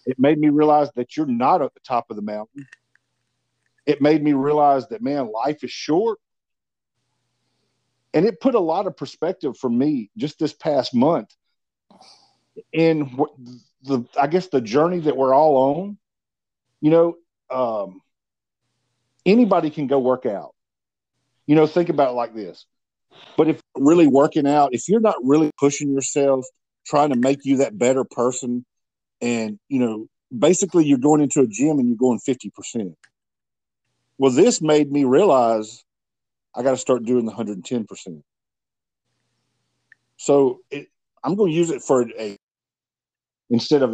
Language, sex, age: English, male, 50-69